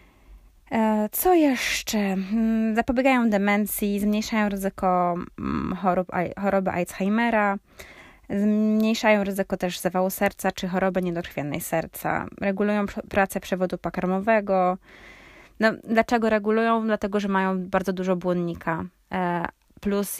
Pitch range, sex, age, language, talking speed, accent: 180-215 Hz, female, 20-39, Polish, 95 wpm, native